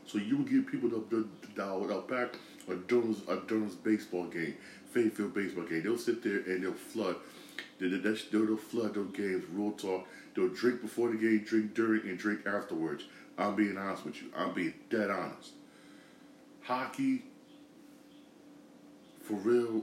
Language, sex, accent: English, male, American